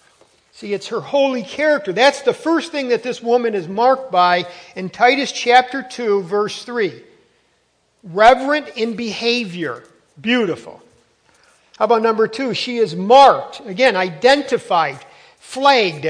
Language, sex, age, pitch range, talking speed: English, male, 50-69, 185-245 Hz, 130 wpm